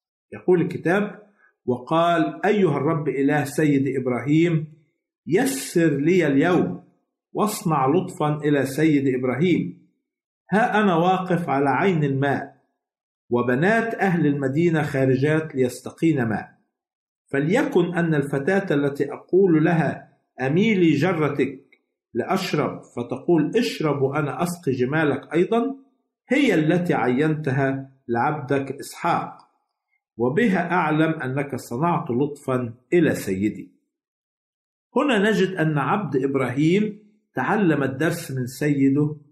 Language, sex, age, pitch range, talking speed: Arabic, male, 50-69, 135-180 Hz, 100 wpm